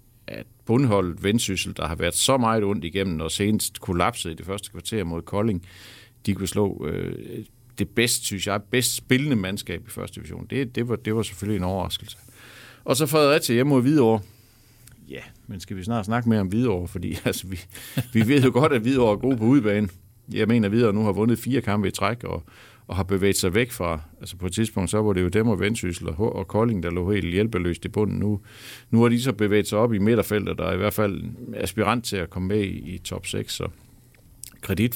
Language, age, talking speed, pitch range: Danish, 60-79, 230 wpm, 95-120 Hz